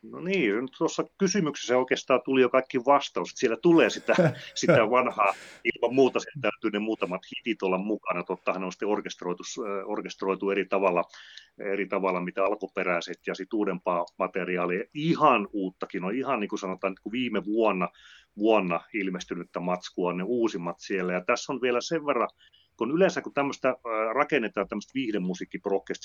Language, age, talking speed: Finnish, 30-49, 160 wpm